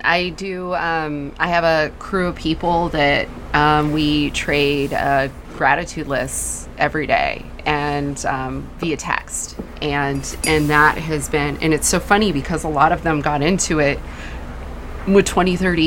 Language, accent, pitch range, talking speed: English, American, 145-185 Hz, 160 wpm